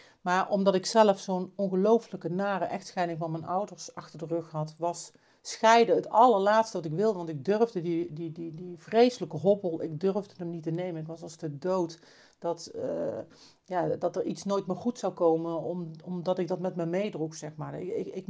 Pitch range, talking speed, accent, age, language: 155-185 Hz, 205 wpm, Dutch, 40-59, Dutch